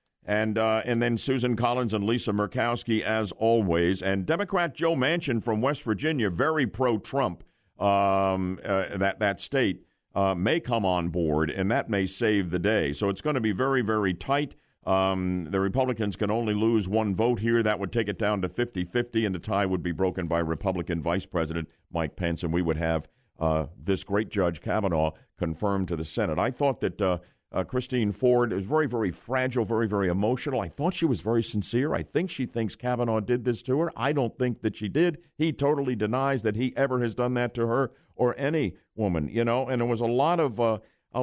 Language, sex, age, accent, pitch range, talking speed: English, male, 50-69, American, 95-130 Hz, 210 wpm